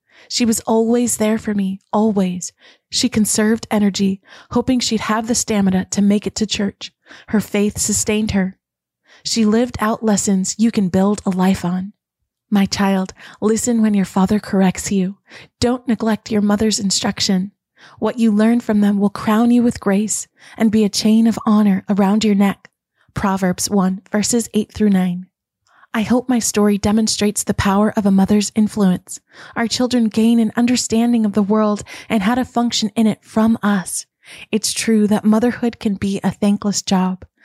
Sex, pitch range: female, 200-225 Hz